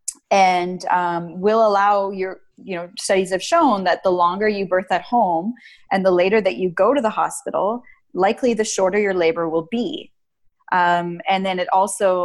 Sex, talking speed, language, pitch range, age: female, 185 wpm, English, 170-205 Hz, 20-39